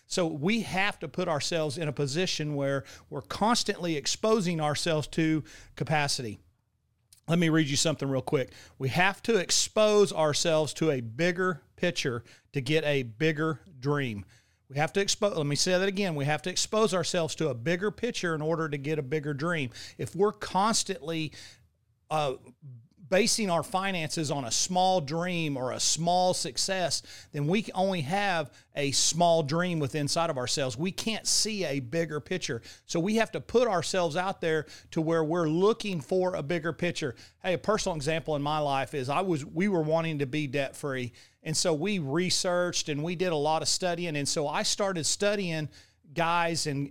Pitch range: 140-180 Hz